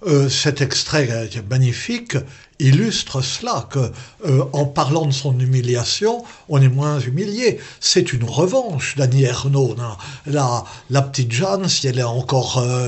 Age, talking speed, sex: 60-79, 160 wpm, male